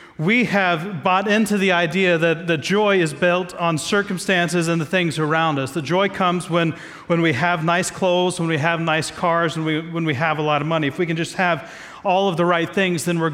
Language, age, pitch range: English, 40-59, 135-175 Hz